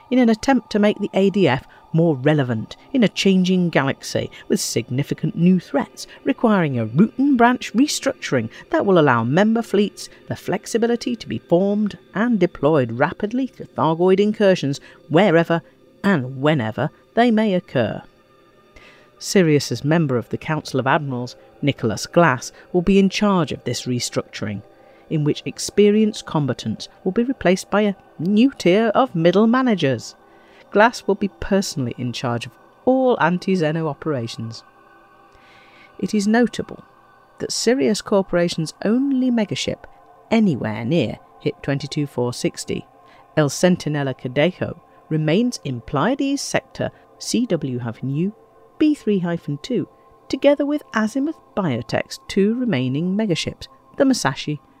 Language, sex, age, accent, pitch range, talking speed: English, female, 50-69, British, 145-220 Hz, 125 wpm